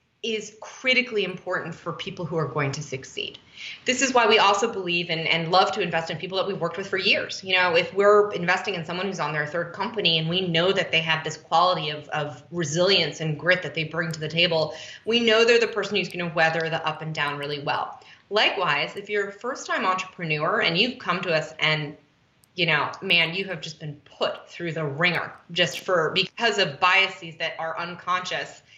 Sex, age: female, 20-39